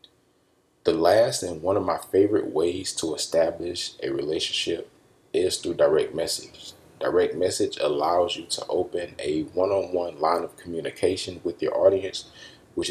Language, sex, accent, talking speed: English, male, American, 145 wpm